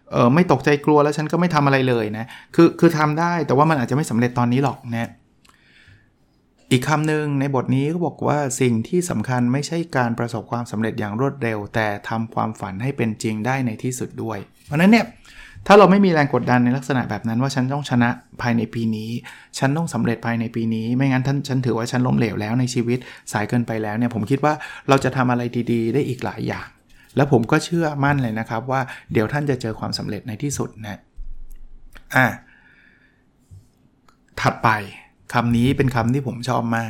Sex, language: male, Thai